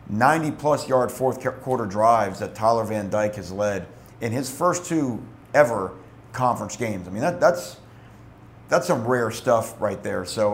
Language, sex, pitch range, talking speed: English, male, 110-130 Hz, 155 wpm